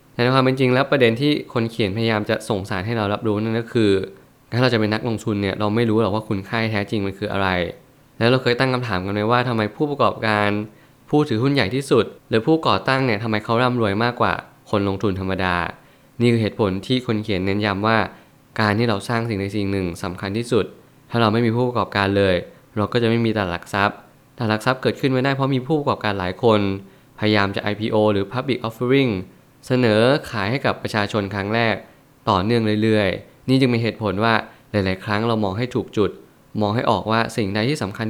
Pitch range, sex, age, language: 100-120 Hz, male, 20-39, Thai